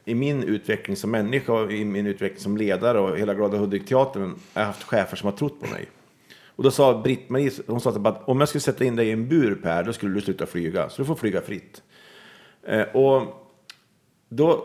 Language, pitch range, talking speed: Swedish, 105-130 Hz, 220 wpm